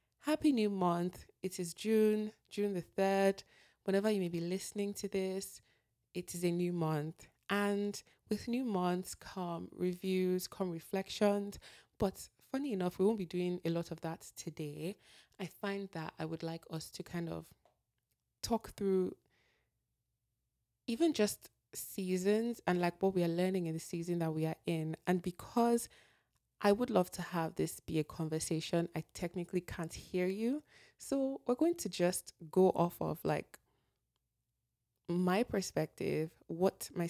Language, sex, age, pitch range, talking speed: English, female, 20-39, 165-200 Hz, 160 wpm